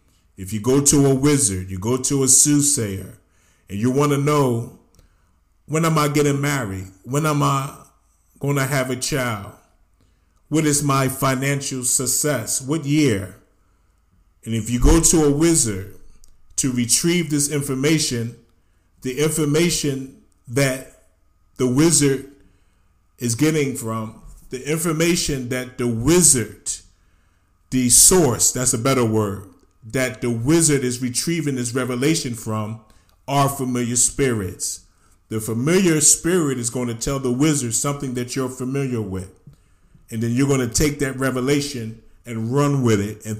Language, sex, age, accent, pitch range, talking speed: English, male, 30-49, American, 100-140 Hz, 145 wpm